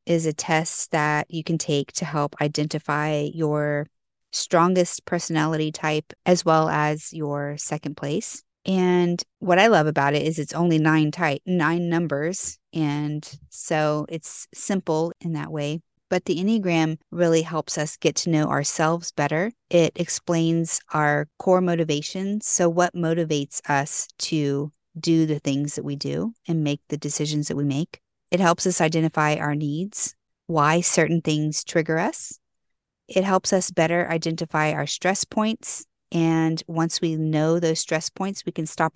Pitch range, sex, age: 150-175 Hz, female, 30-49